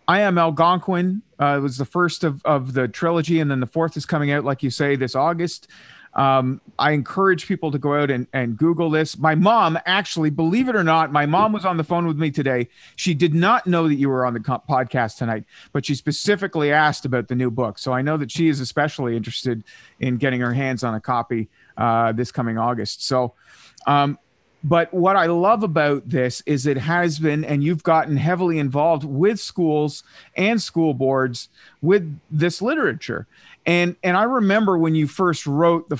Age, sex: 40-59, male